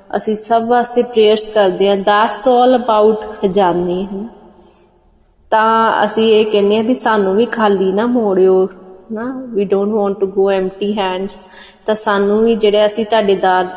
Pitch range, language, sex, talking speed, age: 190-215 Hz, Punjabi, female, 160 wpm, 20-39